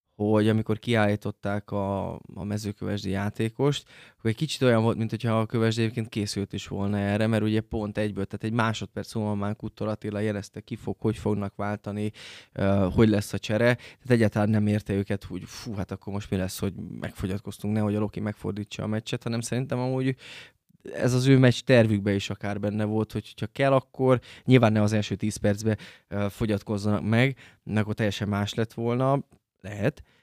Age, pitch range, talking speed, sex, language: 20-39, 105-120 Hz, 175 wpm, male, Hungarian